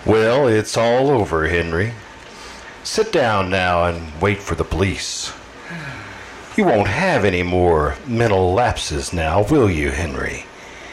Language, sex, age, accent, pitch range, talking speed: English, male, 60-79, American, 85-115 Hz, 130 wpm